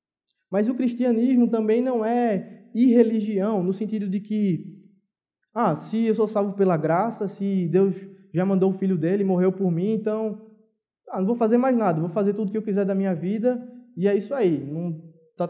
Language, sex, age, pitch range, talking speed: Portuguese, male, 20-39, 180-225 Hz, 200 wpm